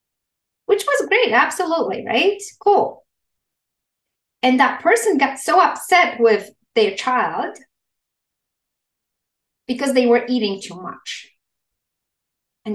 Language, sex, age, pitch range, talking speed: English, female, 30-49, 225-275 Hz, 105 wpm